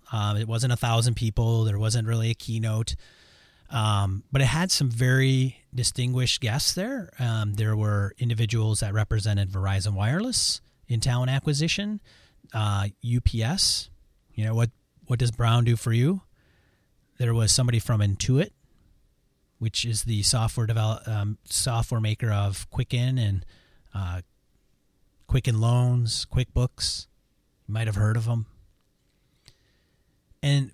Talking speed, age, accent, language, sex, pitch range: 135 wpm, 30-49, American, English, male, 100-125 Hz